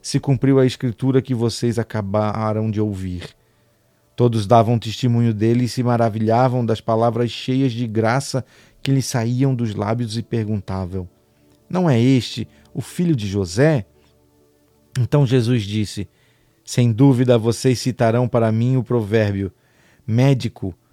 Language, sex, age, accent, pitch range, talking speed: Portuguese, male, 40-59, Brazilian, 110-140 Hz, 135 wpm